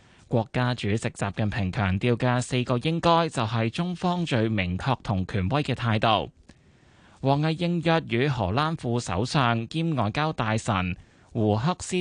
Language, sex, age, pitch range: Chinese, male, 20-39, 105-140 Hz